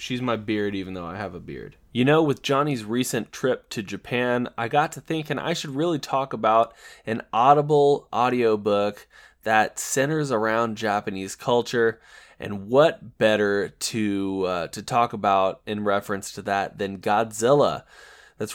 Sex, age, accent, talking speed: male, 20-39, American, 155 wpm